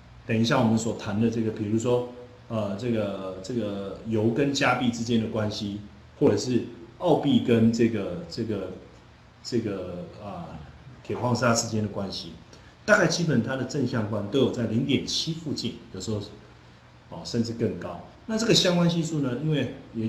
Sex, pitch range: male, 105-130 Hz